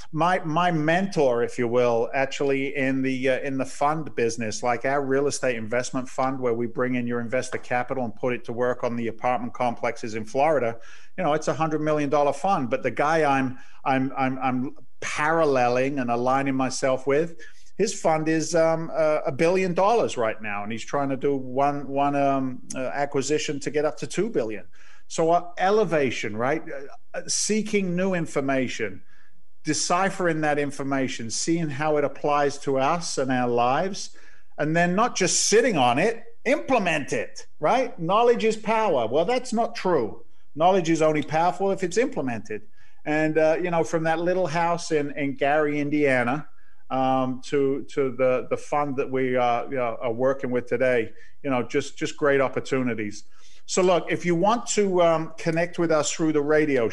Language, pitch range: English, 130-165 Hz